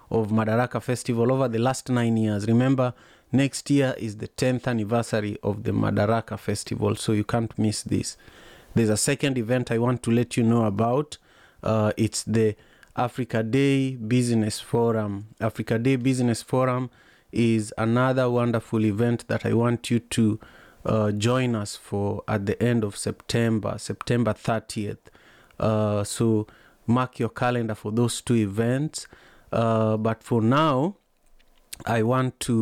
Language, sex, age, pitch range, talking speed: English, male, 30-49, 110-120 Hz, 150 wpm